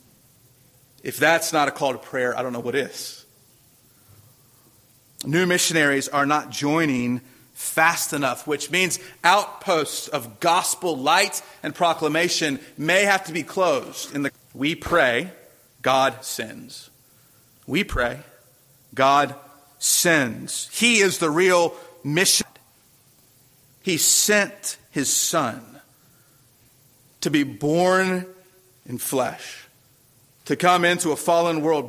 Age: 40-59